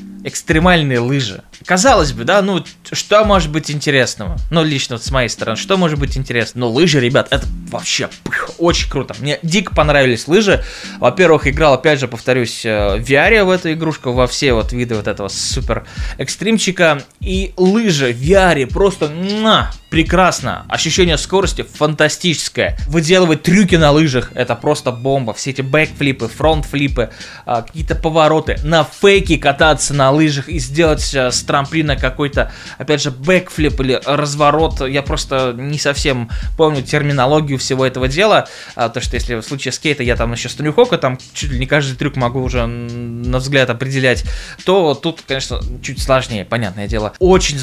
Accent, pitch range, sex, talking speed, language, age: native, 130-170 Hz, male, 160 wpm, Russian, 20-39